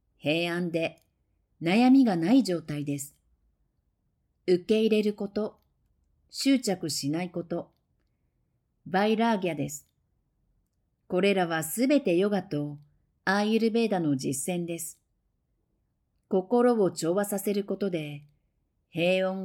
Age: 50-69